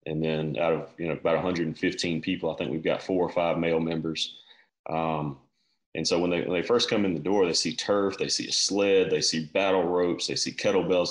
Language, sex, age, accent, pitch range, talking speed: English, male, 30-49, American, 80-95 Hz, 240 wpm